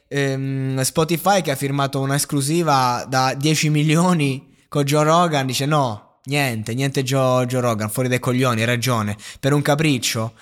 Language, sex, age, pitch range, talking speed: Italian, male, 20-39, 125-160 Hz, 155 wpm